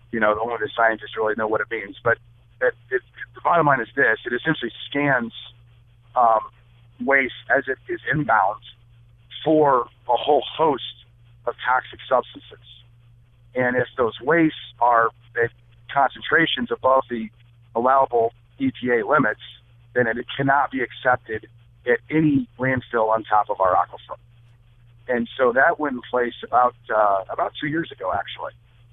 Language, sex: English, male